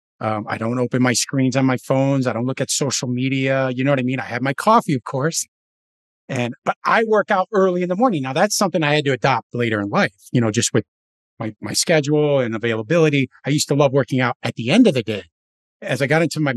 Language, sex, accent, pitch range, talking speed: English, male, American, 120-165 Hz, 255 wpm